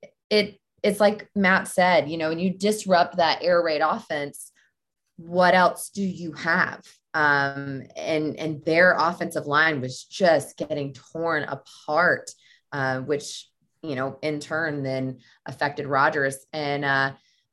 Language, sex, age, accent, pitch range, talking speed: English, female, 20-39, American, 140-175 Hz, 140 wpm